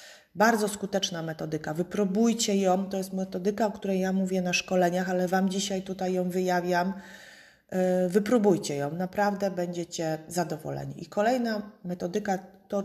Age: 30-49